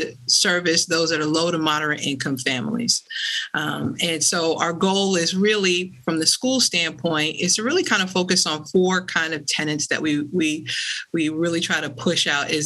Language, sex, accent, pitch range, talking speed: English, female, American, 155-185 Hz, 195 wpm